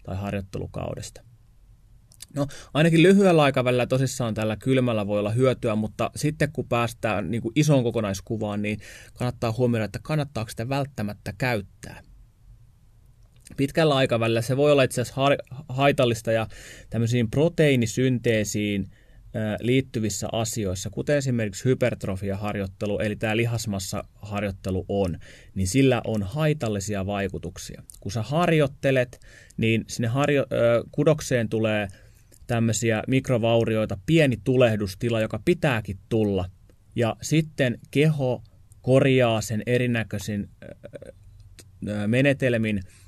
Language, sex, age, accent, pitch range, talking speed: Finnish, male, 20-39, native, 105-130 Hz, 105 wpm